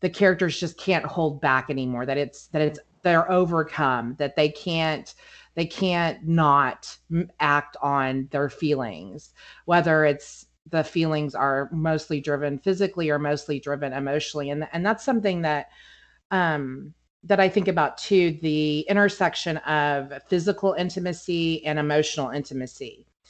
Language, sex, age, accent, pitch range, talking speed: English, female, 30-49, American, 150-180 Hz, 140 wpm